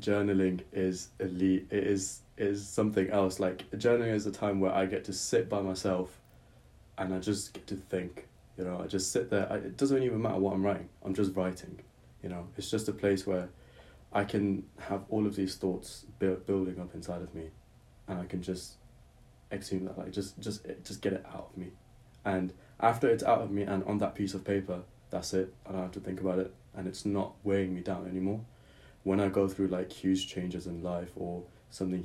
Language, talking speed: English, 220 wpm